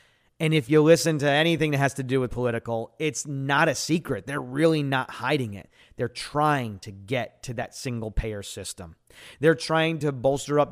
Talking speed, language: 190 wpm, English